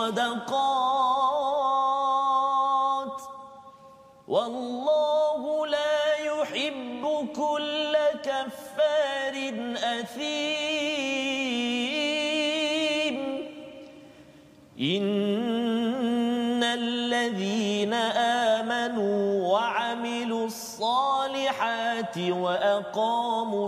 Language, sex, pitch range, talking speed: Malayalam, male, 205-270 Hz, 35 wpm